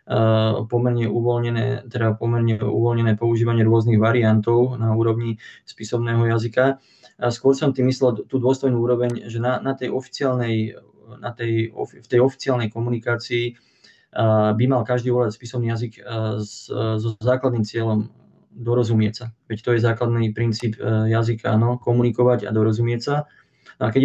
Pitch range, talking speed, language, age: 110-120 Hz, 145 wpm, Slovak, 20-39